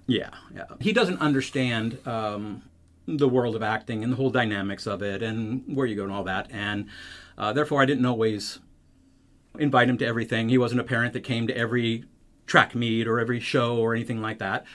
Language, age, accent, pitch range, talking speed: English, 50-69, American, 110-135 Hz, 205 wpm